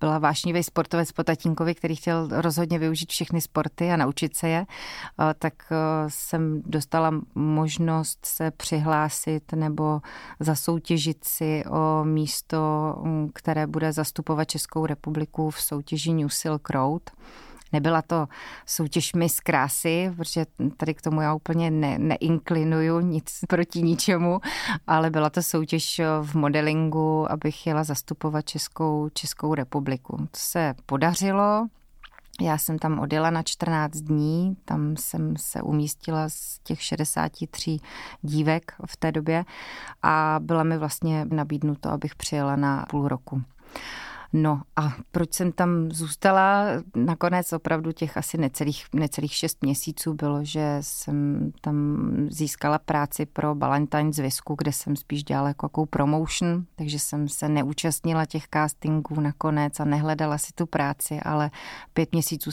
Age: 30-49